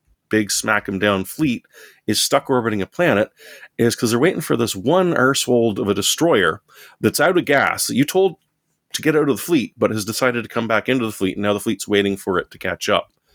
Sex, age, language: male, 30-49, English